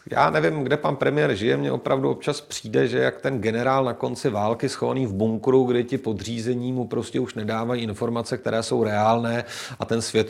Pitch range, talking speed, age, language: 115-140 Hz, 200 wpm, 40-59, Czech